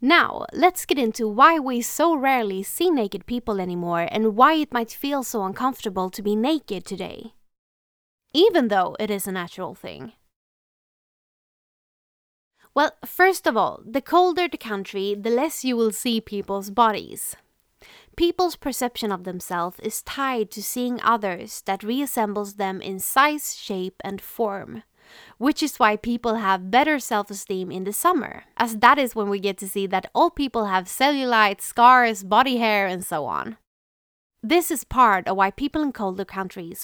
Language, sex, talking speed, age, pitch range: English, female, 165 wpm, 20-39, 195-260 Hz